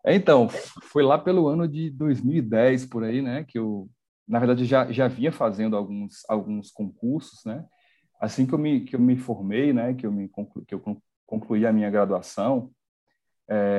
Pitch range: 110-145 Hz